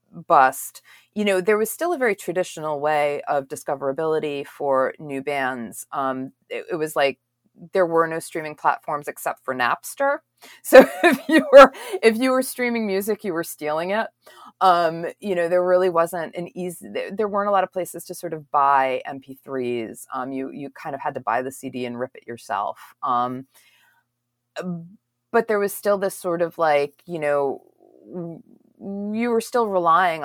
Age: 30-49